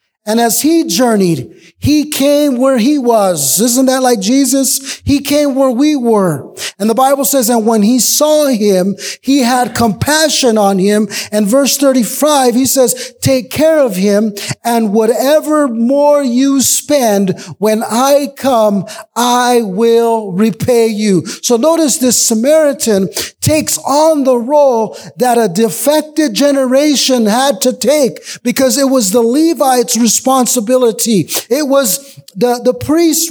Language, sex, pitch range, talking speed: English, male, 230-285 Hz, 140 wpm